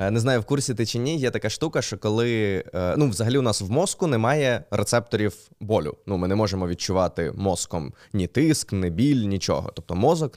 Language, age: Ukrainian, 20-39